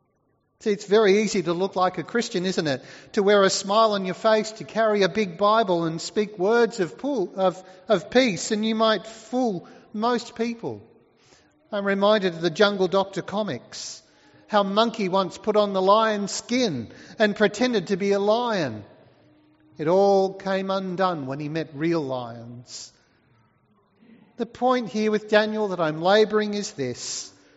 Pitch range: 160-220 Hz